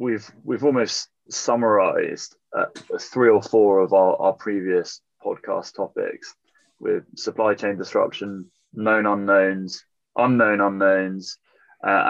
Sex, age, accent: male, 20-39, British